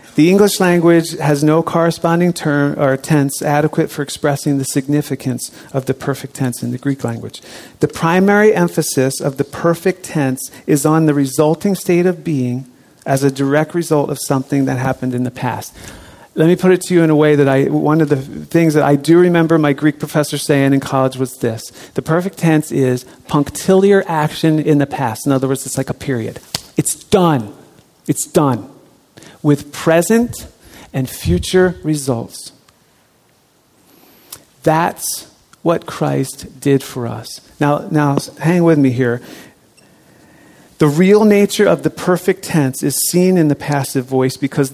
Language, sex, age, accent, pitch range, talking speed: English, male, 40-59, American, 135-170 Hz, 170 wpm